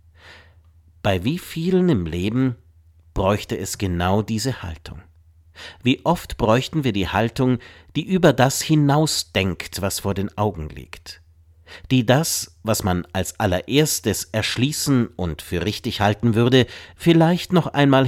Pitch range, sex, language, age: 85-135 Hz, male, German, 50-69